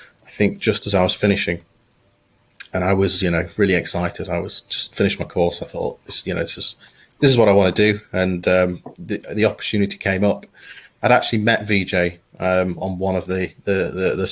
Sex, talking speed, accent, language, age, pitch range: male, 220 wpm, British, English, 30-49, 90-100 Hz